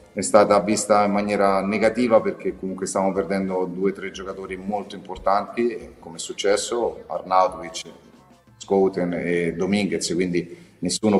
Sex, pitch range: male, 90-105 Hz